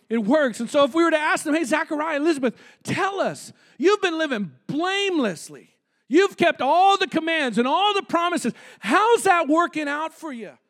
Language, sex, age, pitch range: English, male, 40-59, 230-315 Hz